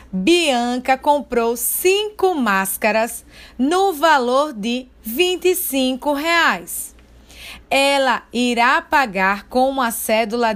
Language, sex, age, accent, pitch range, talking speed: Portuguese, female, 20-39, Brazilian, 235-315 Hz, 85 wpm